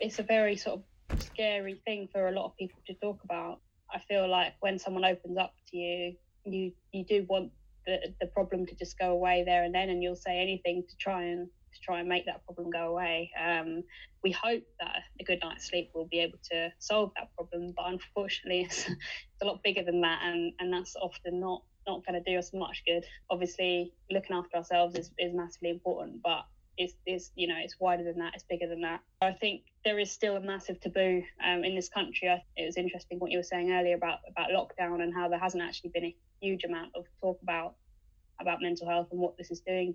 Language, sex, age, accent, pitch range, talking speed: English, female, 20-39, British, 175-185 Hz, 230 wpm